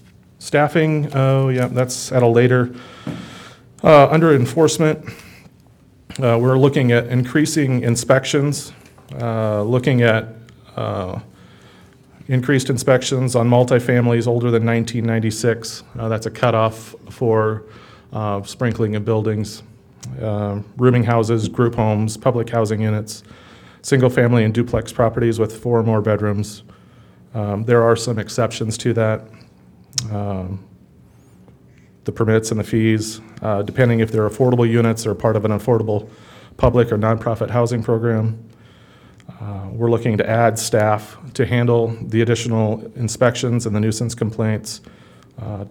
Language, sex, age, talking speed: English, male, 30-49, 125 wpm